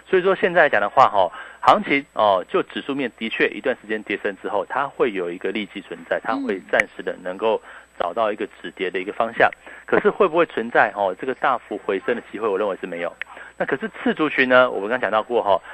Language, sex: Chinese, male